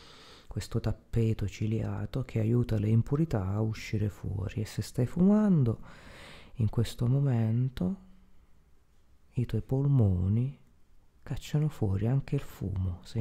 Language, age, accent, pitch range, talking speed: Italian, 30-49, native, 95-130 Hz, 120 wpm